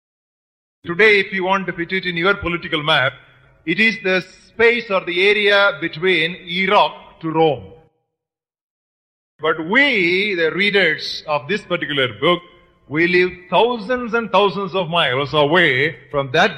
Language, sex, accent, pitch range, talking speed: English, male, Indian, 135-190 Hz, 145 wpm